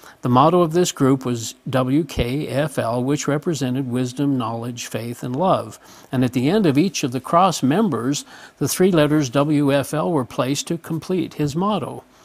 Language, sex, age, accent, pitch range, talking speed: English, male, 50-69, American, 130-160 Hz, 165 wpm